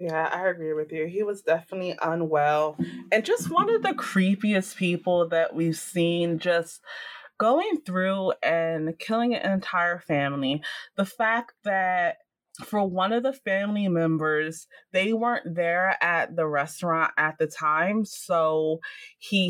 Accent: American